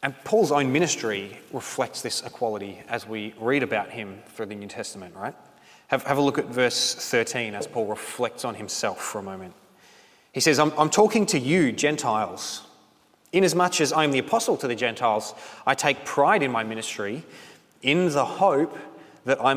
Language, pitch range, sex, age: English, 115-150 Hz, male, 30-49